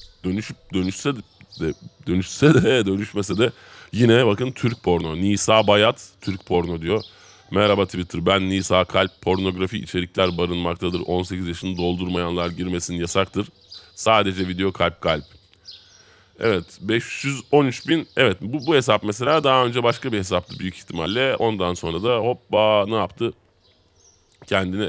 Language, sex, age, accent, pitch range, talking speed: Turkish, male, 30-49, native, 85-105 Hz, 135 wpm